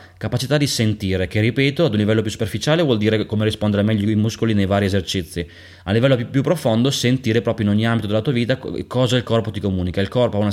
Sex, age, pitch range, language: male, 20-39, 100-120 Hz, Italian